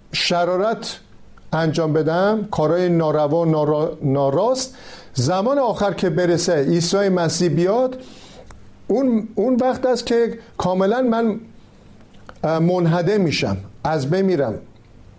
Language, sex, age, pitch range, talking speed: Persian, male, 50-69, 155-215 Hz, 95 wpm